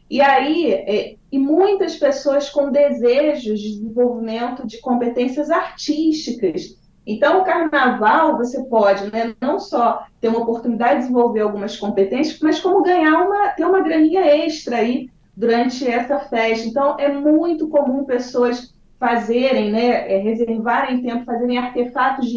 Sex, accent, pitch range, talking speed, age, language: female, Brazilian, 220-275 Hz, 135 wpm, 30-49, Portuguese